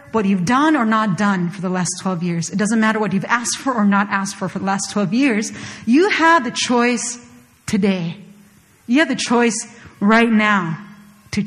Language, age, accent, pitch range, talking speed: English, 40-59, American, 200-245 Hz, 205 wpm